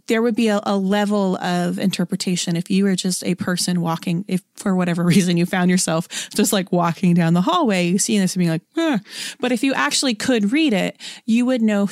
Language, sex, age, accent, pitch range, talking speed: English, female, 30-49, American, 180-225 Hz, 225 wpm